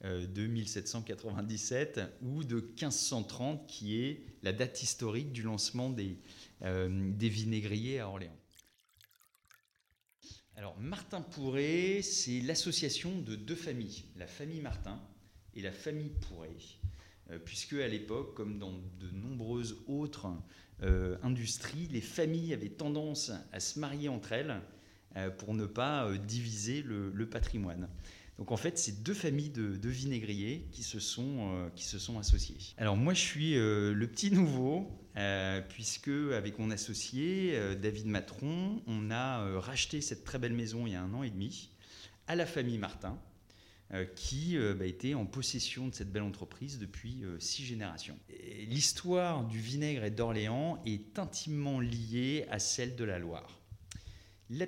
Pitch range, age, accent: 100-135 Hz, 30-49, French